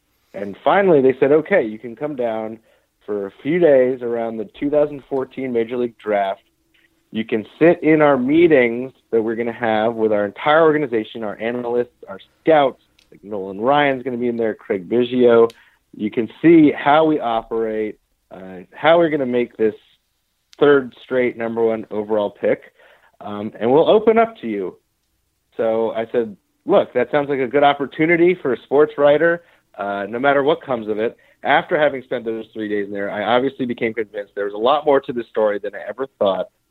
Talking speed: 195 wpm